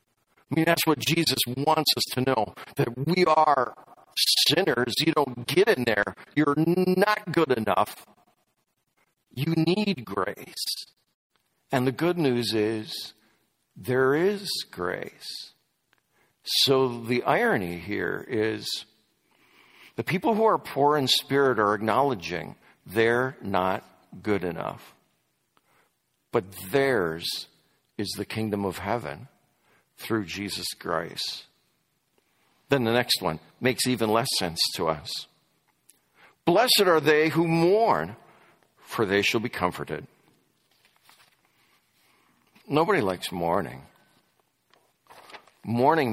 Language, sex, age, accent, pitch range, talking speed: English, male, 50-69, American, 105-145 Hz, 110 wpm